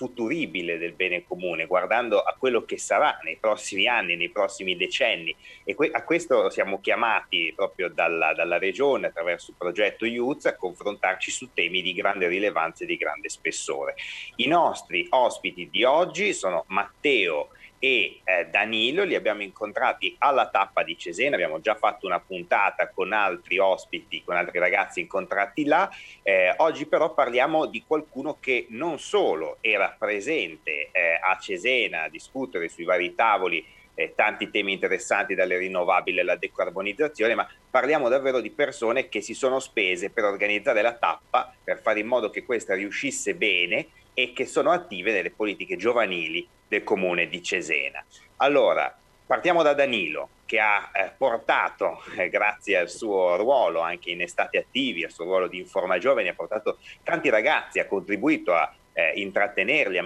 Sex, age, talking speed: male, 30-49, 160 wpm